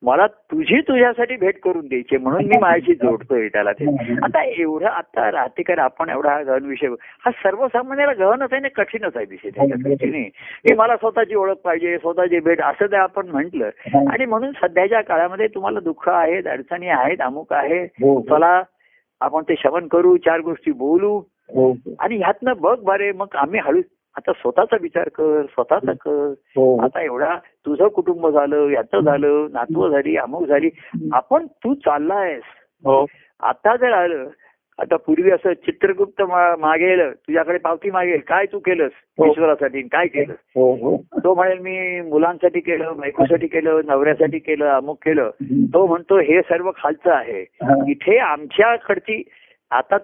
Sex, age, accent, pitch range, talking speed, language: male, 60-79, native, 150-220 Hz, 150 wpm, Marathi